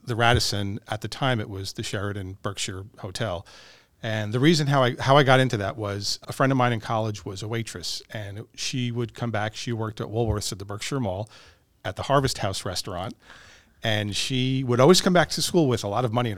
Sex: male